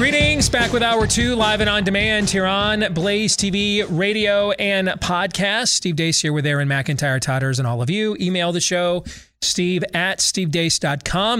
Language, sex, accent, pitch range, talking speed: English, male, American, 140-190 Hz, 175 wpm